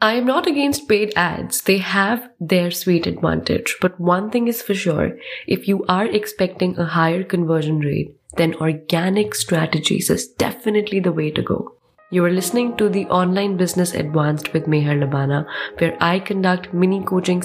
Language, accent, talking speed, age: English, Indian, 170 wpm, 20-39